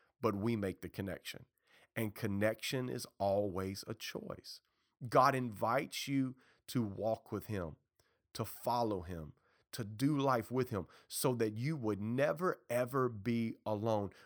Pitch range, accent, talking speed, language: 100-130 Hz, American, 145 wpm, English